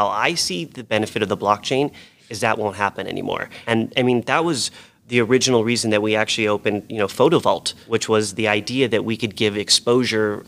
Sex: male